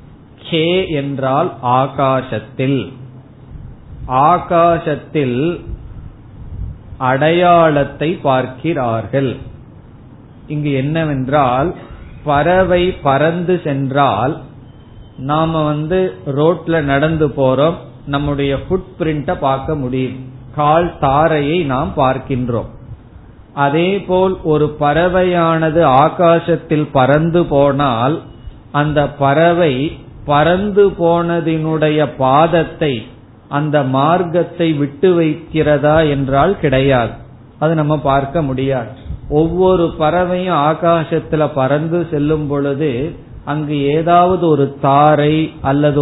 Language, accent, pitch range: Tamil, native, 130-160 Hz